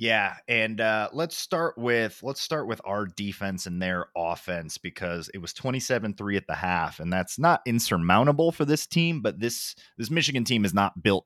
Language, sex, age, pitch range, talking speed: English, male, 30-49, 90-120 Hz, 195 wpm